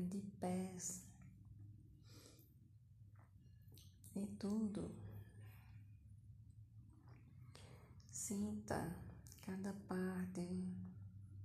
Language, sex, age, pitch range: Portuguese, female, 20-39, 100-170 Hz